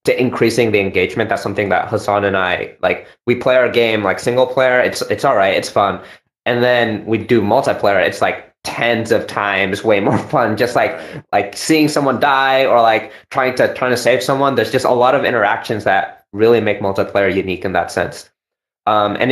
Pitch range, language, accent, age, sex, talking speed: 105-135 Hz, English, American, 20-39, male, 210 wpm